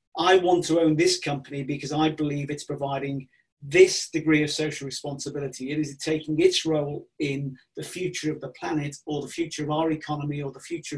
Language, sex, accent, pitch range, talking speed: English, male, British, 145-175 Hz, 210 wpm